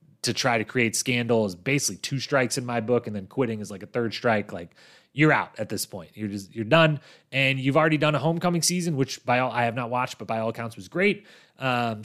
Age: 30-49